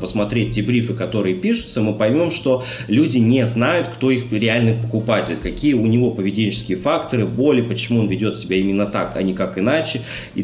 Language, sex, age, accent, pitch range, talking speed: Russian, male, 30-49, native, 105-125 Hz, 185 wpm